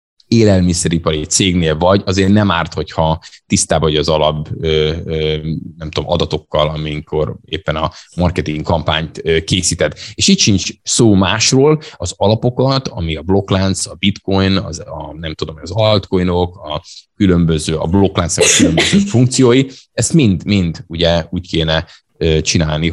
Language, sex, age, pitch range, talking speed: Hungarian, male, 20-39, 80-100 Hz, 130 wpm